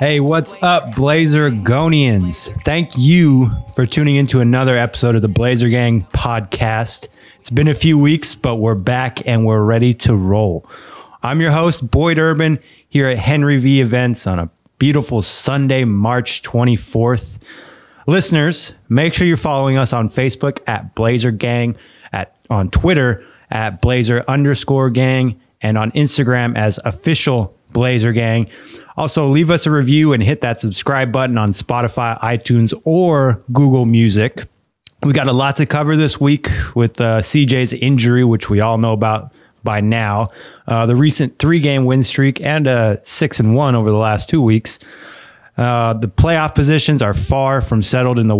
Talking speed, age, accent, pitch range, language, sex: 165 wpm, 20-39, American, 115-145 Hz, English, male